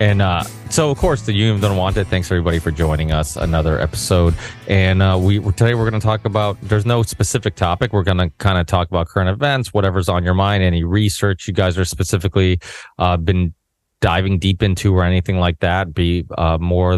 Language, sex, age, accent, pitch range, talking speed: English, male, 30-49, American, 85-105 Hz, 215 wpm